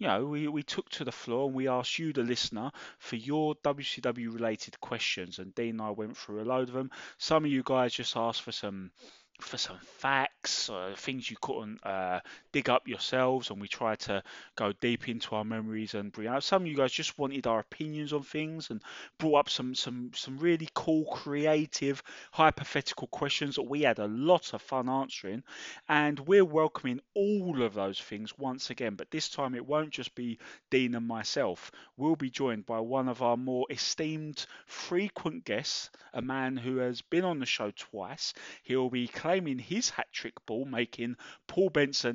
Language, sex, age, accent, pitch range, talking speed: English, male, 20-39, British, 115-150 Hz, 190 wpm